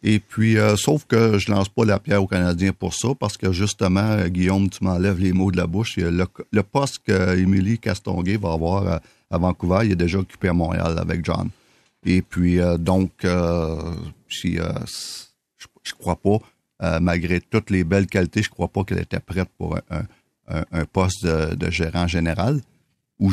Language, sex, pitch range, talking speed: French, male, 85-105 Hz, 195 wpm